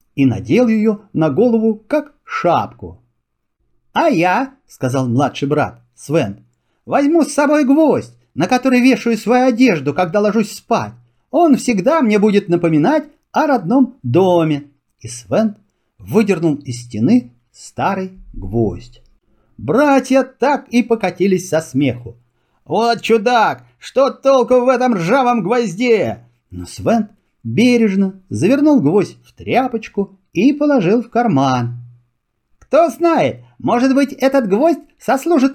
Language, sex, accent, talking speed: Russian, male, native, 120 wpm